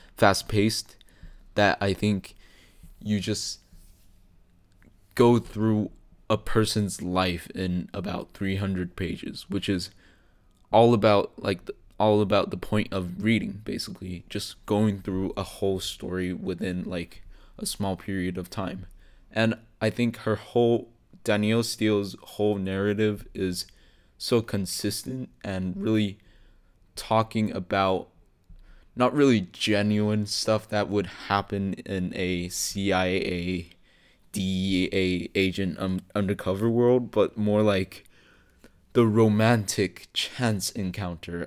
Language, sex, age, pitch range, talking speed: English, male, 20-39, 90-105 Hz, 115 wpm